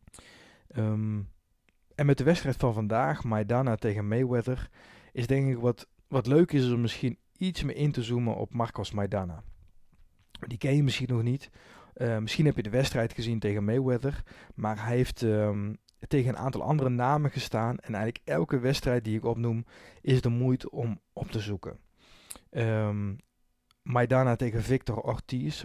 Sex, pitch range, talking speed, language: male, 105-130 Hz, 160 wpm, Dutch